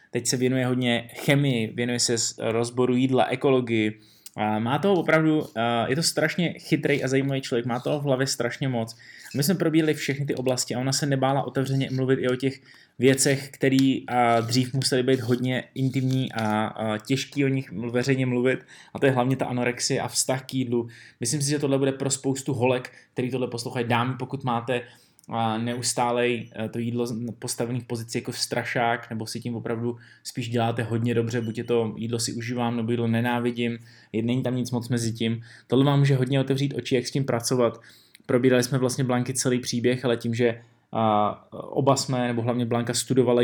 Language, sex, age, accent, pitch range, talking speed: Czech, male, 20-39, native, 120-130 Hz, 190 wpm